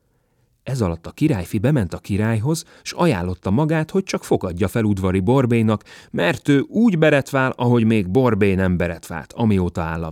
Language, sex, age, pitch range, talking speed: Hungarian, male, 30-49, 95-150 Hz, 165 wpm